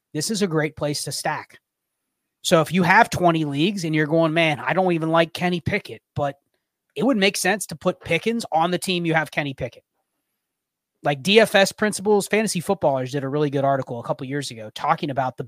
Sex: male